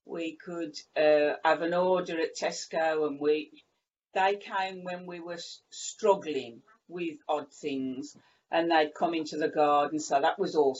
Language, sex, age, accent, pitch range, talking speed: English, female, 50-69, British, 160-205 Hz, 160 wpm